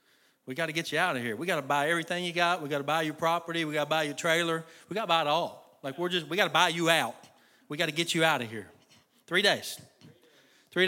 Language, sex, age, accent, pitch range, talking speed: English, male, 40-59, American, 155-220 Hz, 255 wpm